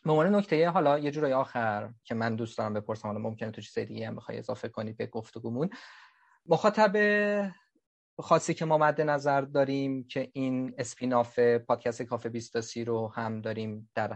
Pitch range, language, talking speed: 115-145 Hz, Persian, 170 wpm